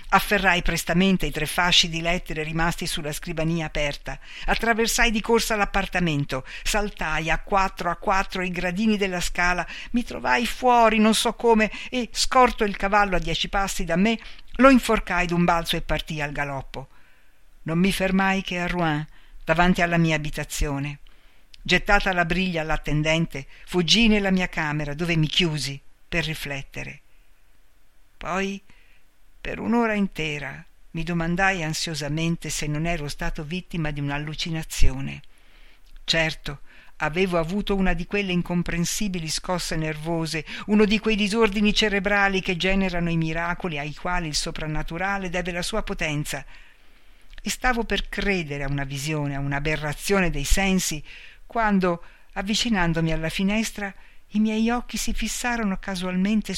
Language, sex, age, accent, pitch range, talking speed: Italian, female, 60-79, native, 155-200 Hz, 140 wpm